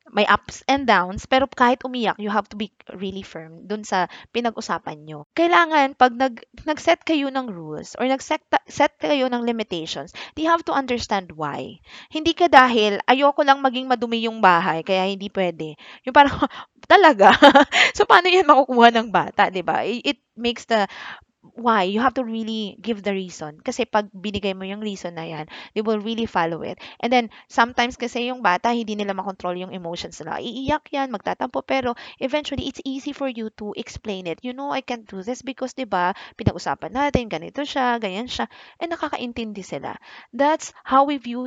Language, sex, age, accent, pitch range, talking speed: English, female, 20-39, Filipino, 205-270 Hz, 185 wpm